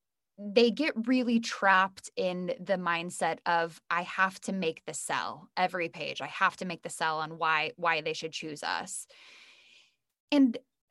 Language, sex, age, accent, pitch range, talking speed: English, female, 10-29, American, 175-235 Hz, 165 wpm